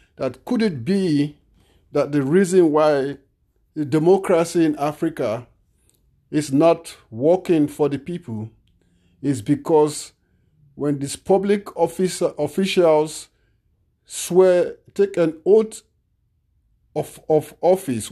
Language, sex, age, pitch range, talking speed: English, male, 50-69, 110-165 Hz, 105 wpm